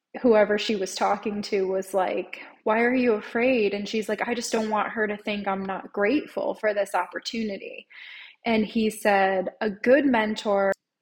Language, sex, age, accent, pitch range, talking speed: English, female, 10-29, American, 195-230 Hz, 180 wpm